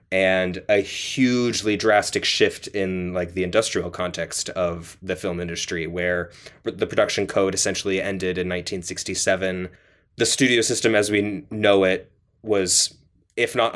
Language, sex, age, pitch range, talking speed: English, male, 20-39, 90-105 Hz, 140 wpm